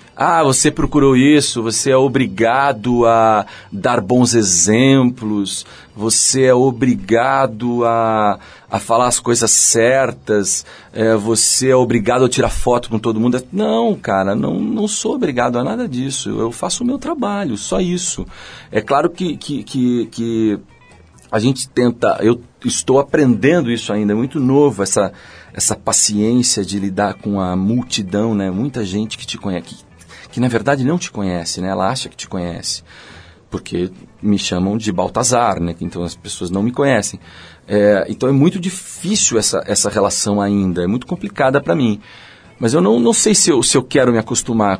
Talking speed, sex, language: 165 wpm, male, Portuguese